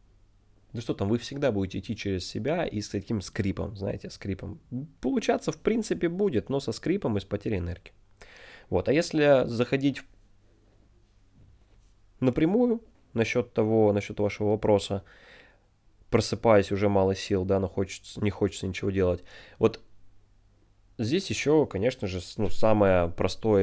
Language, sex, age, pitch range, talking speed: Russian, male, 20-39, 95-115 Hz, 135 wpm